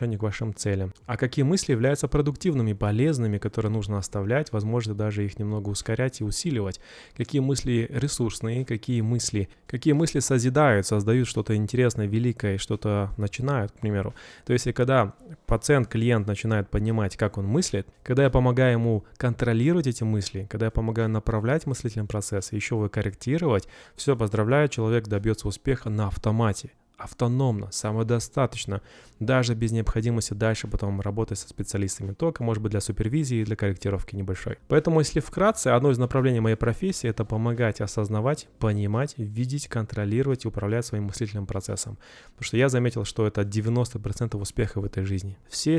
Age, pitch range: 20-39, 105-130 Hz